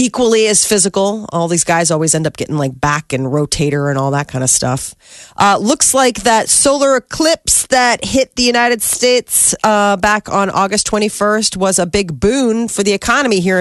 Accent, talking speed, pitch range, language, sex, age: American, 195 wpm, 180-225 Hz, English, female, 30-49